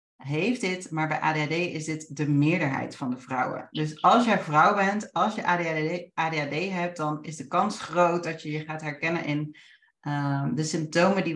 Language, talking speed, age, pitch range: Dutch, 195 wpm, 40-59, 150-185 Hz